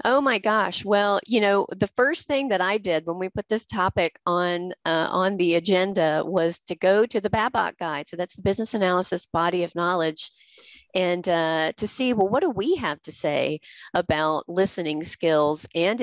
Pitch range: 170-220 Hz